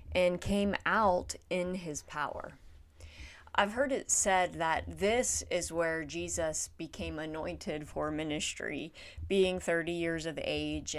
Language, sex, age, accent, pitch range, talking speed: English, female, 30-49, American, 155-195 Hz, 130 wpm